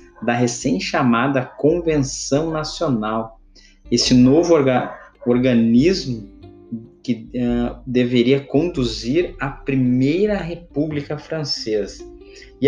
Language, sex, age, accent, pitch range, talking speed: Portuguese, male, 20-39, Brazilian, 115-140 Hz, 70 wpm